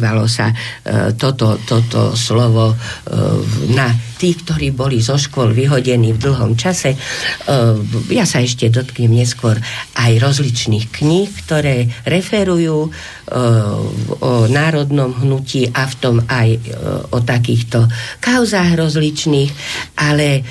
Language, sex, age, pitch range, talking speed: Slovak, female, 50-69, 120-170 Hz, 120 wpm